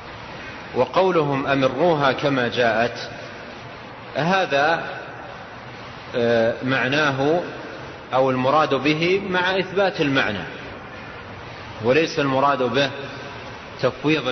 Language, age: Arabic, 40-59